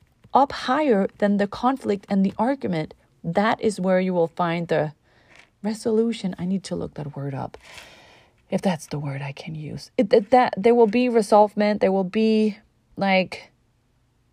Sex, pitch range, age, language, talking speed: female, 170-230 Hz, 30-49, English, 170 wpm